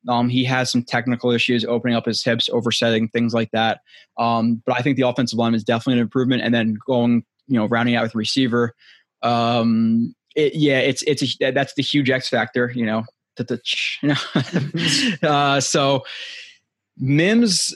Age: 20-39